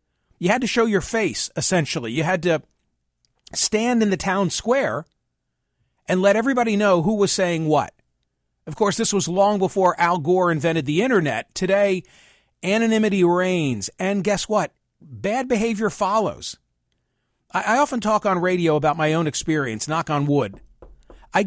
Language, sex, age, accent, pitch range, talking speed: English, male, 50-69, American, 155-205 Hz, 155 wpm